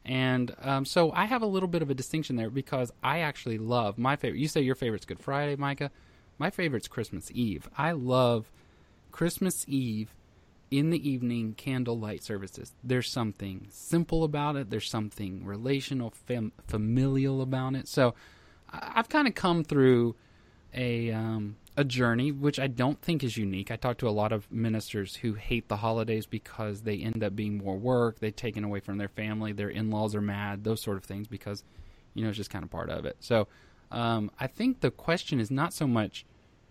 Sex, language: male, English